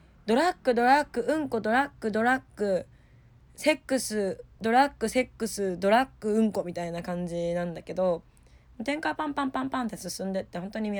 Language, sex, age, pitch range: Japanese, female, 20-39, 170-250 Hz